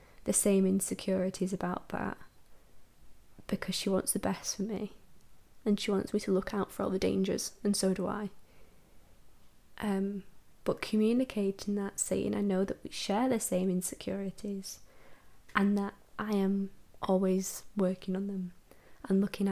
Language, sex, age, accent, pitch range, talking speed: English, female, 20-39, British, 190-220 Hz, 155 wpm